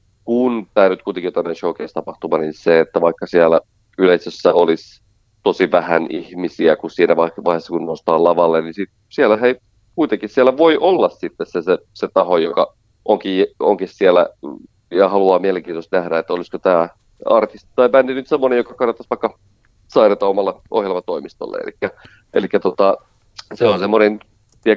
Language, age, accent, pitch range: Finnish, 30-49, native, 95-125 Hz